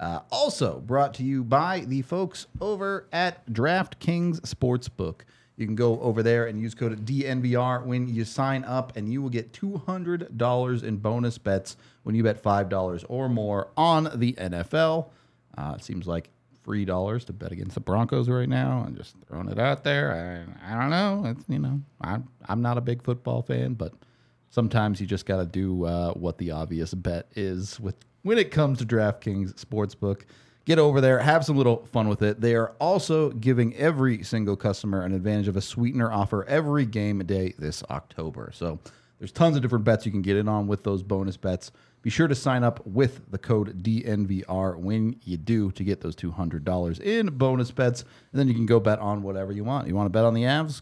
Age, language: 30-49, English